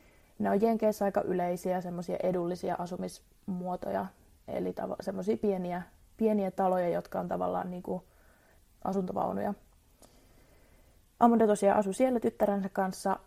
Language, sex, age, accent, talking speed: Finnish, female, 20-39, native, 115 wpm